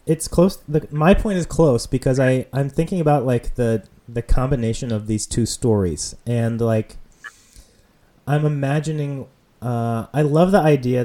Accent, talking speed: American, 155 wpm